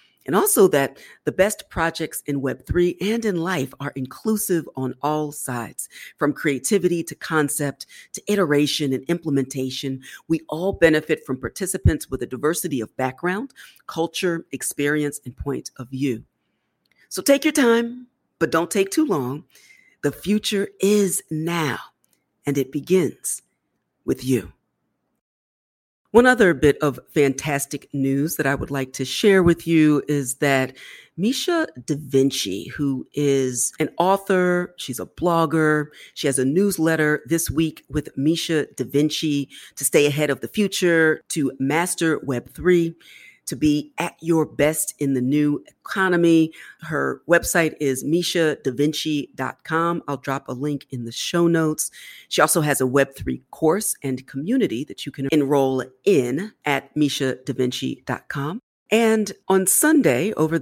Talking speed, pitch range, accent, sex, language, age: 140 wpm, 135-175 Hz, American, female, English, 40-59